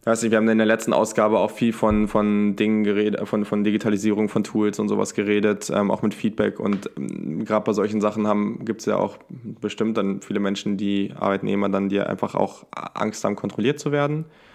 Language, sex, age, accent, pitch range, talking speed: German, male, 10-29, German, 105-120 Hz, 205 wpm